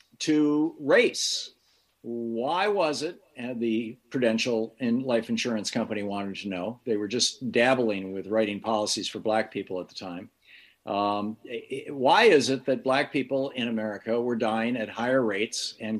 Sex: male